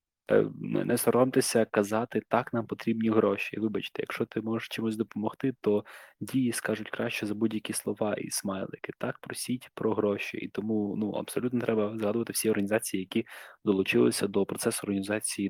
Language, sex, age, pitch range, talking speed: Ukrainian, male, 20-39, 100-115 Hz, 150 wpm